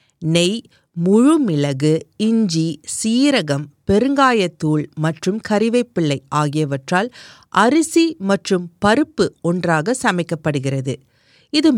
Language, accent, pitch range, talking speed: Tamil, native, 150-220 Hz, 70 wpm